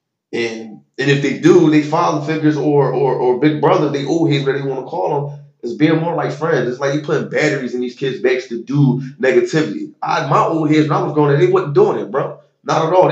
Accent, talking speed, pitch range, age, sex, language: American, 260 wpm, 120-155 Hz, 20-39, male, English